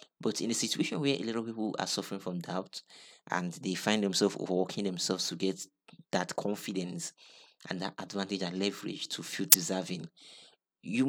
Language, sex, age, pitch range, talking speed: English, male, 30-49, 90-105 Hz, 175 wpm